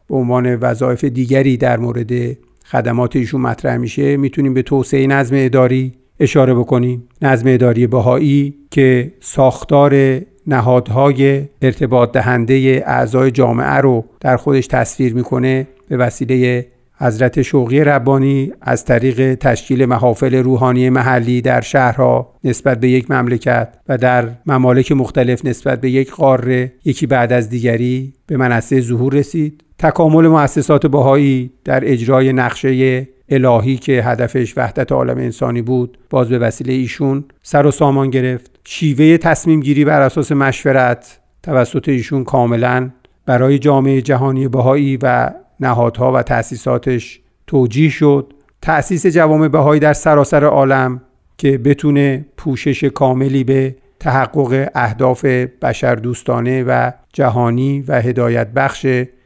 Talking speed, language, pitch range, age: 125 wpm, Persian, 125-140 Hz, 50-69